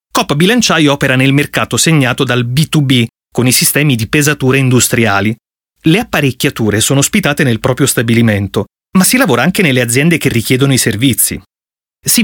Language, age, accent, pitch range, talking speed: Italian, 30-49, native, 120-175 Hz, 155 wpm